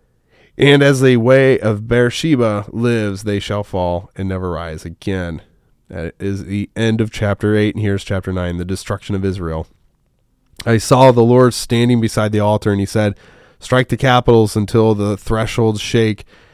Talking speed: 170 wpm